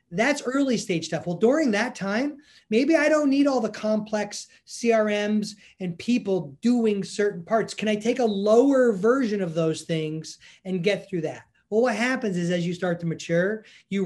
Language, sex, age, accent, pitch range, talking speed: English, male, 30-49, American, 180-230 Hz, 190 wpm